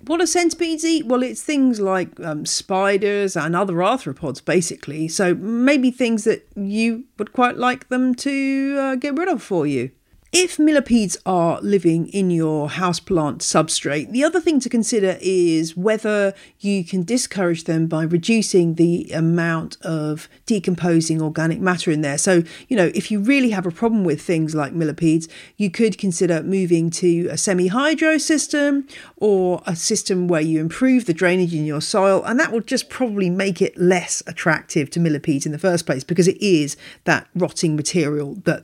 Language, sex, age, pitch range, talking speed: English, female, 40-59, 165-230 Hz, 175 wpm